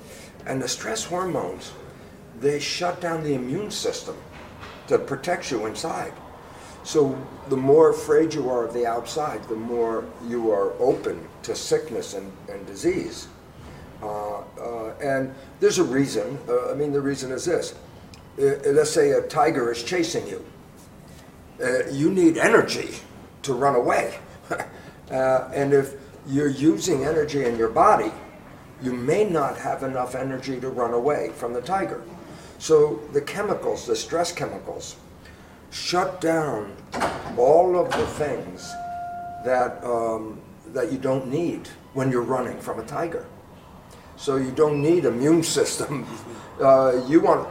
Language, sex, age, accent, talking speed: Turkish, male, 60-79, American, 145 wpm